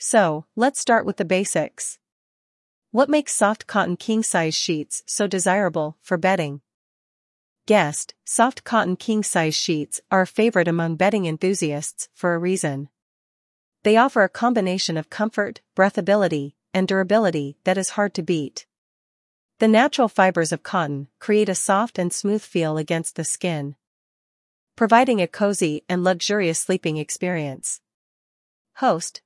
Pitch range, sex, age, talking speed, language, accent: 165-215 Hz, female, 40-59, 135 wpm, English, American